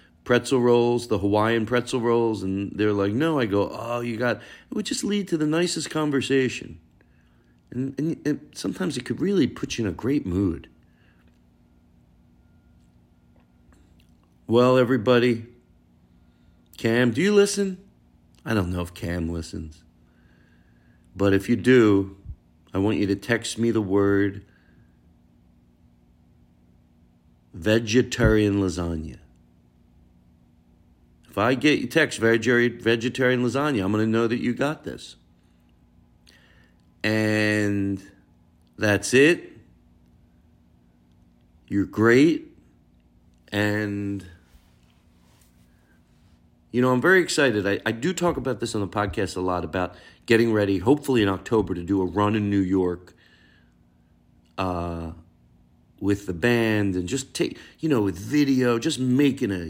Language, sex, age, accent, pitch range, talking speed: English, male, 50-69, American, 80-120 Hz, 125 wpm